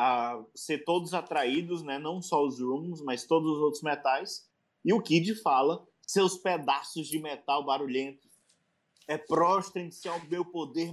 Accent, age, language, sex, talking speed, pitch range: Brazilian, 20-39, Portuguese, male, 155 wpm, 135-190 Hz